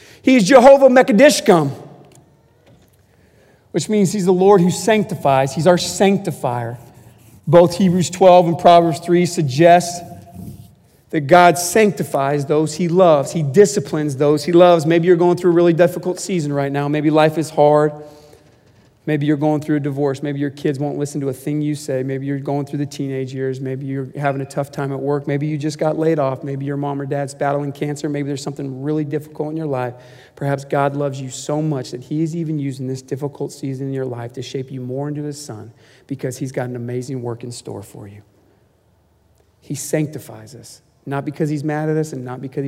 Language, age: English, 40-59